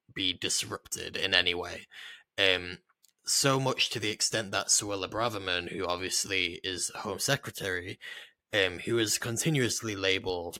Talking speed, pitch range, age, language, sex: 135 wpm, 95-120 Hz, 20-39, English, male